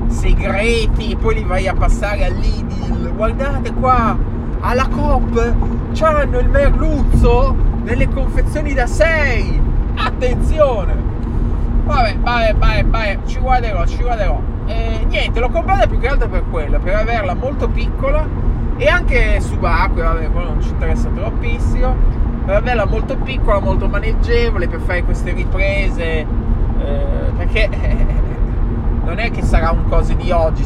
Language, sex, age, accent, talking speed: Italian, male, 20-39, native, 135 wpm